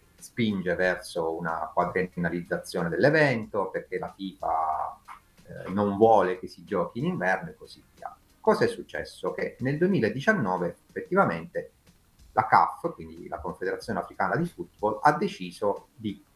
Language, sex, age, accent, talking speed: Italian, male, 30-49, native, 135 wpm